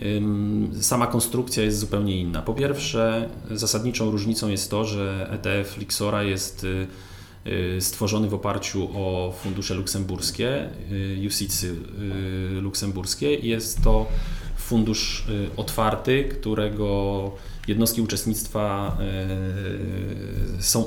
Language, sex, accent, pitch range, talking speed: Polish, male, native, 95-110 Hz, 90 wpm